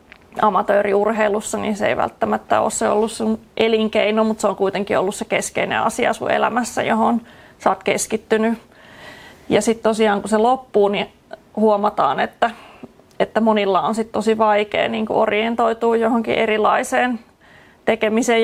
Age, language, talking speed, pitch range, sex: 30-49, Finnish, 140 wpm, 210-225 Hz, female